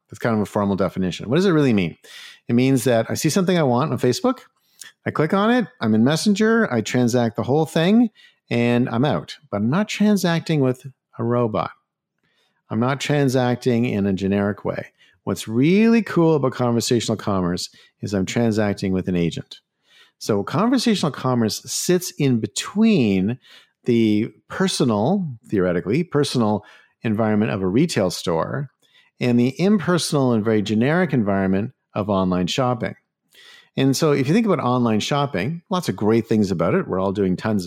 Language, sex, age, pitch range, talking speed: English, male, 50-69, 105-150 Hz, 165 wpm